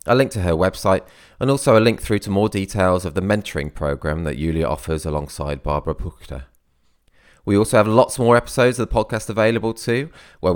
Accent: British